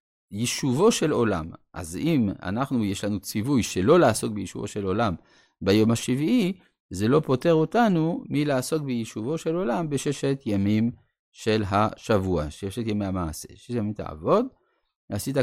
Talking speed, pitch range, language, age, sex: 135 wpm, 105-155 Hz, Hebrew, 50-69, male